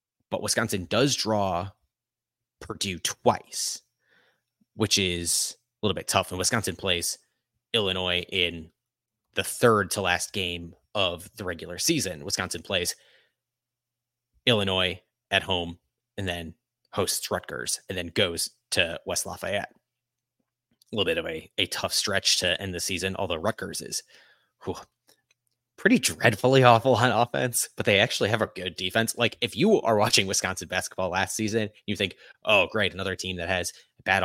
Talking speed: 150 wpm